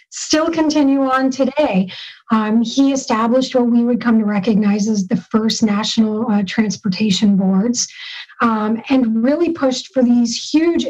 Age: 40-59